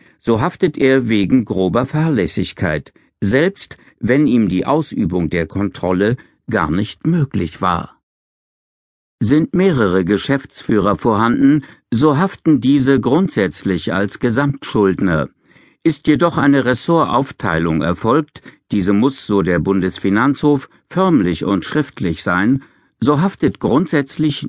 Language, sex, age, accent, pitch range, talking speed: German, male, 60-79, German, 95-145 Hz, 110 wpm